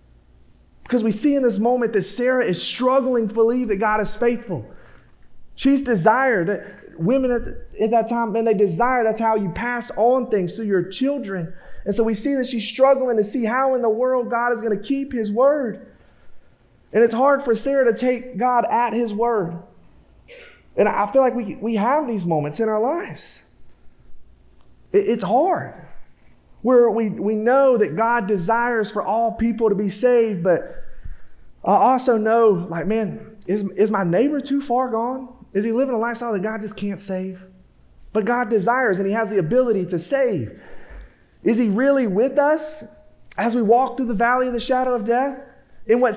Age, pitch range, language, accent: 30-49, 215-255 Hz, English, American